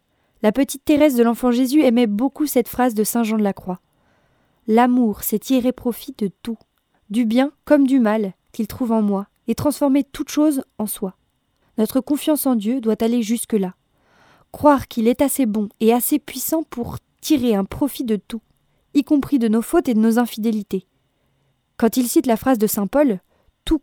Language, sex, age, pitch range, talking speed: French, female, 20-39, 220-275 Hz, 190 wpm